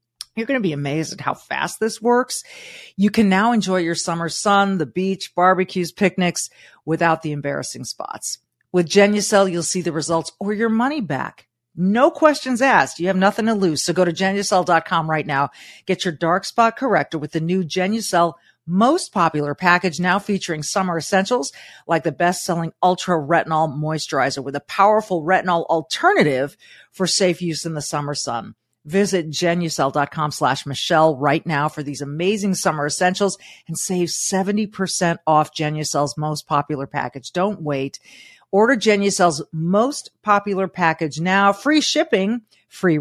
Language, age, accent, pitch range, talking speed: English, 40-59, American, 155-195 Hz, 155 wpm